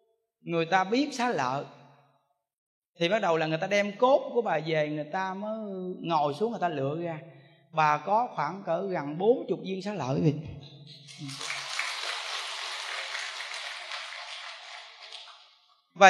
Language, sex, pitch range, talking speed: Vietnamese, male, 170-235 Hz, 140 wpm